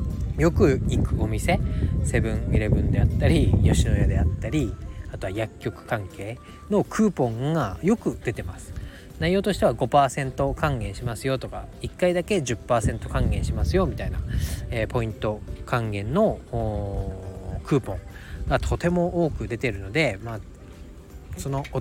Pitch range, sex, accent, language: 95-145 Hz, male, native, Japanese